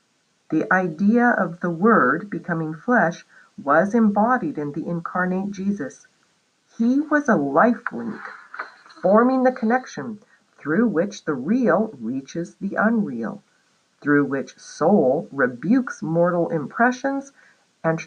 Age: 50-69